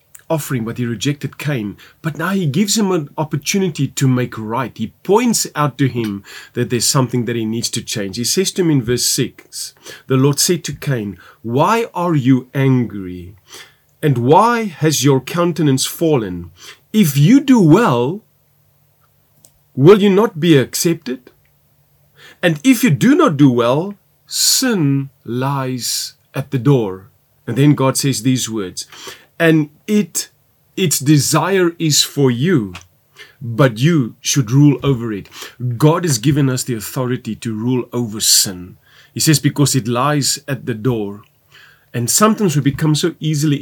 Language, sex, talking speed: English, male, 155 wpm